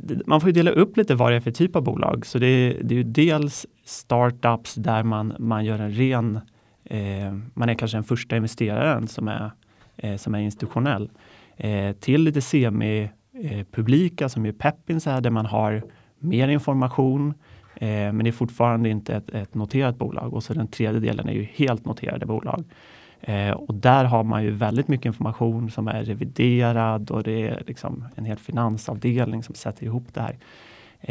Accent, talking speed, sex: native, 190 wpm, male